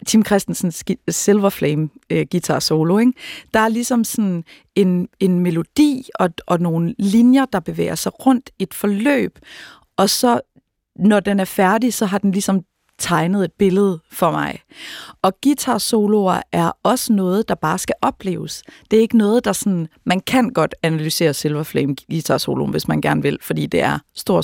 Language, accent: Danish, native